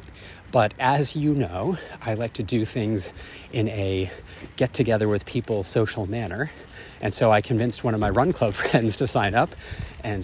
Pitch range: 100-135 Hz